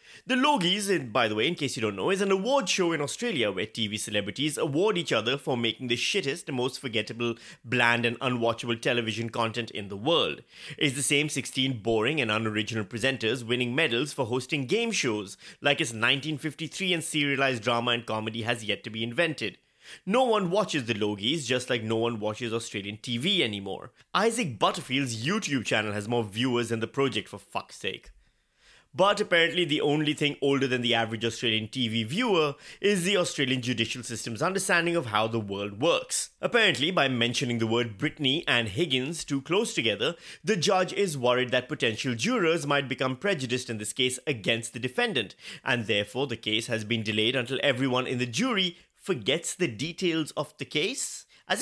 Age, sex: 30-49, male